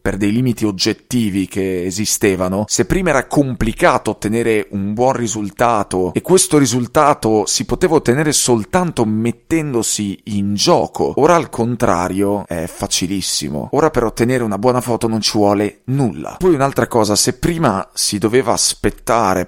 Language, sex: Italian, male